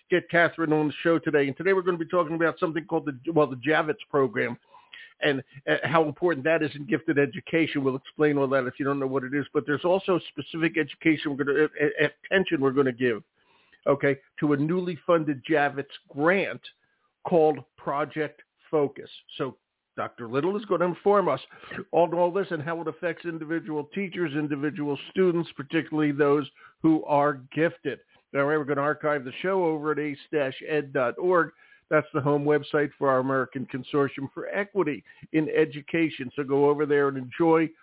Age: 50-69